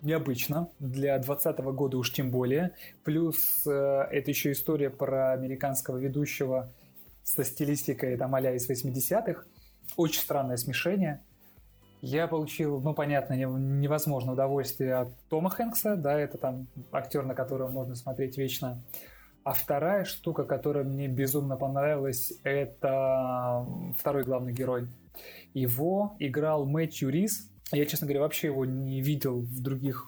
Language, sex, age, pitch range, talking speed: Russian, male, 20-39, 130-150 Hz, 130 wpm